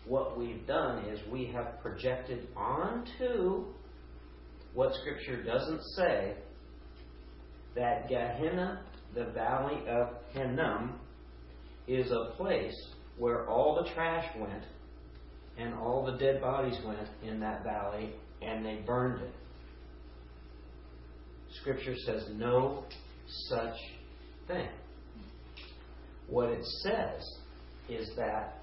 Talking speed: 105 wpm